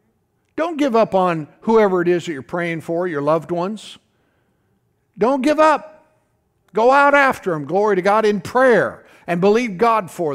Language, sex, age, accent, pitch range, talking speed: English, male, 60-79, American, 180-245 Hz, 175 wpm